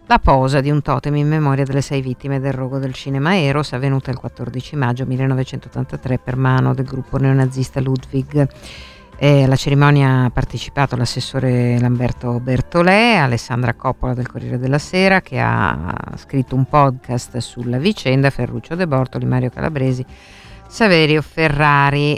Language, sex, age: Italian, female, 50-69